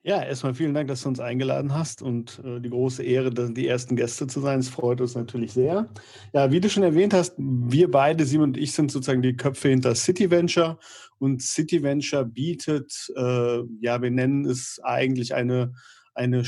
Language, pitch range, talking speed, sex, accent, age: German, 125-150 Hz, 195 wpm, male, German, 40-59